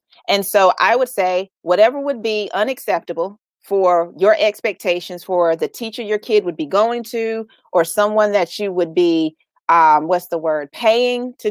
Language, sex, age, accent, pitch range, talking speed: English, female, 30-49, American, 175-255 Hz, 170 wpm